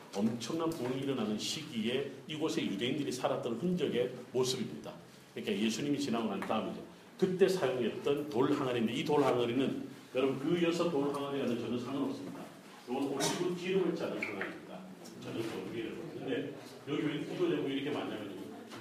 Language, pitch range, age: Korean, 120-165 Hz, 40-59